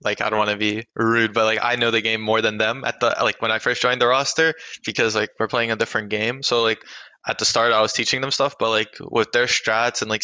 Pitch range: 110-120 Hz